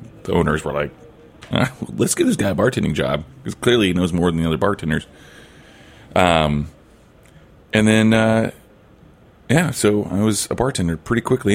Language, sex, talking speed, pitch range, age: English, male, 165 wpm, 80-110 Hz, 30-49